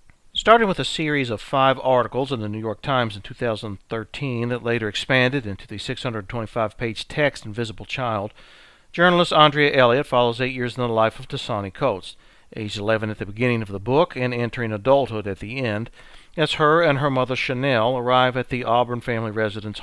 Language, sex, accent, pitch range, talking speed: English, male, American, 105-135 Hz, 185 wpm